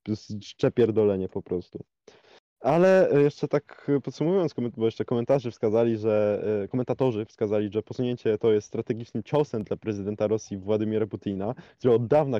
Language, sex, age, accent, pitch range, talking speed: Polish, male, 20-39, native, 105-130 Hz, 135 wpm